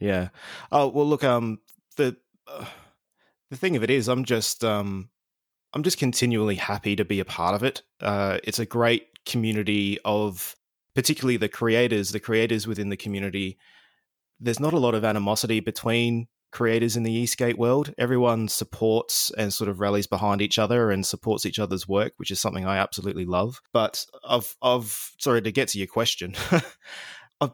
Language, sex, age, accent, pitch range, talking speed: English, male, 20-39, Australian, 105-120 Hz, 175 wpm